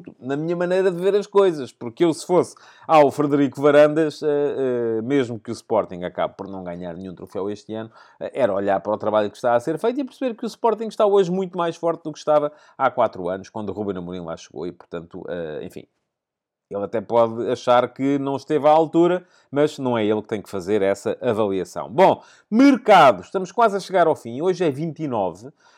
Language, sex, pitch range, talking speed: Portuguese, male, 125-170 Hz, 225 wpm